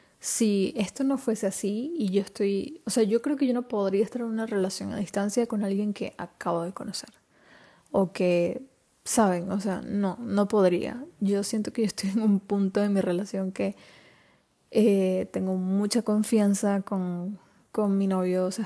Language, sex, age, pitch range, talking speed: Spanish, female, 20-39, 195-225 Hz, 185 wpm